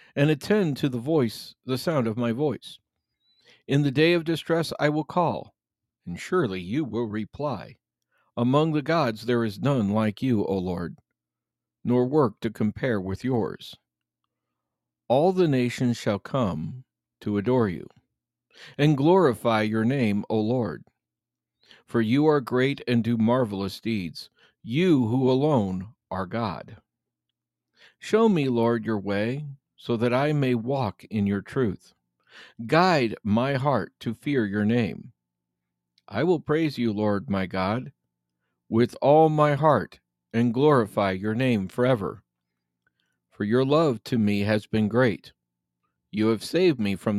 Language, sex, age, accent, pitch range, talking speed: English, male, 50-69, American, 95-135 Hz, 145 wpm